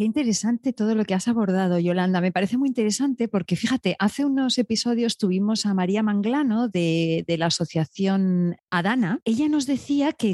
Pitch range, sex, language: 170-230 Hz, female, Spanish